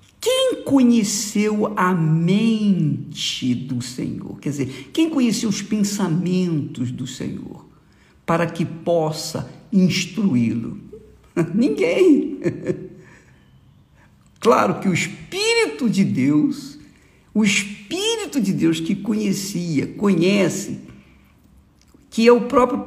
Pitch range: 155-230 Hz